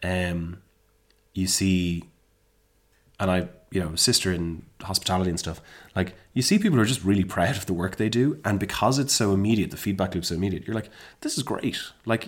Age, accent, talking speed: 20-39, Irish, 205 wpm